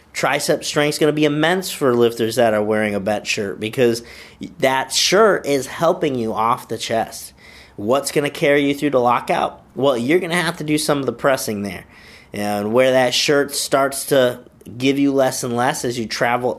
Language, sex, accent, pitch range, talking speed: English, male, American, 115-140 Hz, 210 wpm